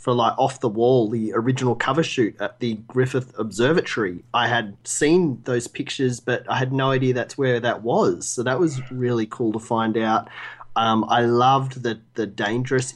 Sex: male